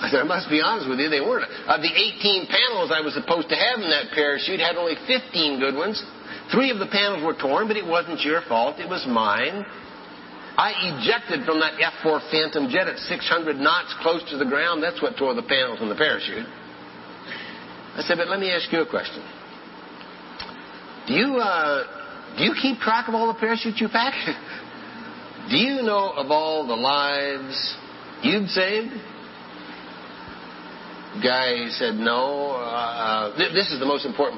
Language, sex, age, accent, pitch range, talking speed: English, male, 60-79, American, 135-215 Hz, 180 wpm